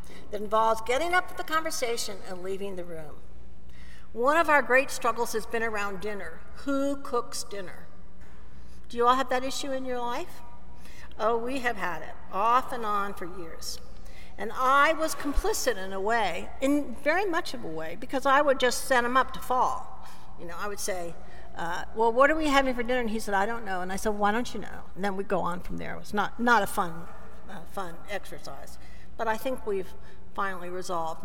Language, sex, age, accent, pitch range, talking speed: English, female, 60-79, American, 185-250 Hz, 215 wpm